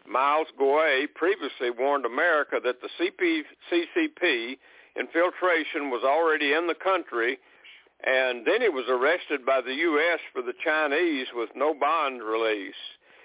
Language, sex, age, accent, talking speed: English, male, 60-79, American, 135 wpm